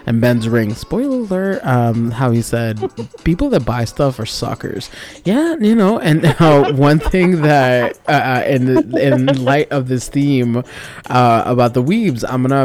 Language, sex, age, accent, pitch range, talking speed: English, male, 20-39, American, 110-130 Hz, 165 wpm